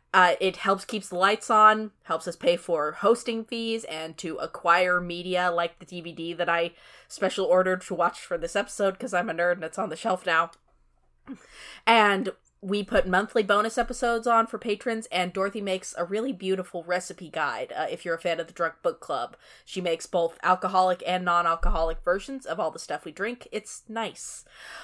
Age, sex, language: 20-39, female, English